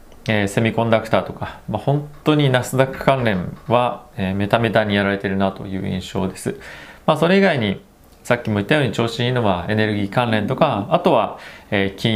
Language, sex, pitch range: Japanese, male, 100-130 Hz